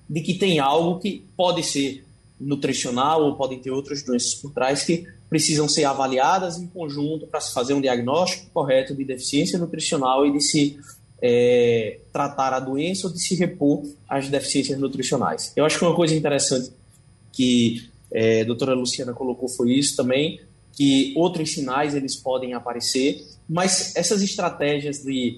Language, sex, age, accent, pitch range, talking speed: Portuguese, male, 20-39, Brazilian, 135-170 Hz, 155 wpm